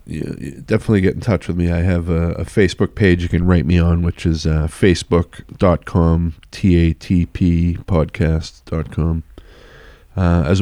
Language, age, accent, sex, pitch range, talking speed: English, 40-59, American, male, 80-95 Hz, 165 wpm